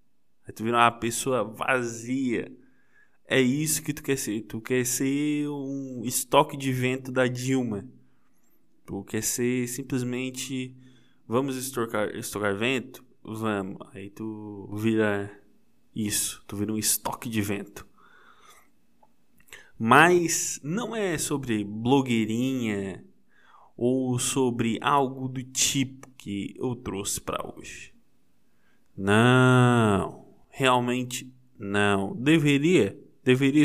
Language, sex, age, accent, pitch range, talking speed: Portuguese, male, 20-39, Brazilian, 110-135 Hz, 105 wpm